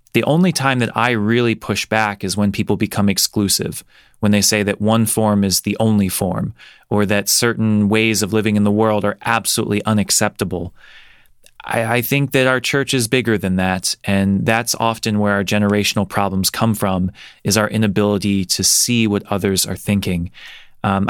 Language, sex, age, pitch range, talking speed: English, male, 20-39, 105-130 Hz, 180 wpm